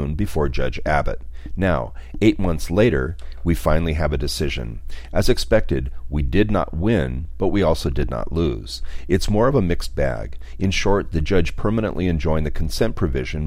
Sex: male